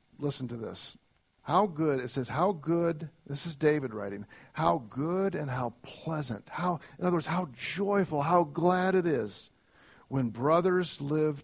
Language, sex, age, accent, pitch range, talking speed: English, male, 50-69, American, 135-195 Hz, 165 wpm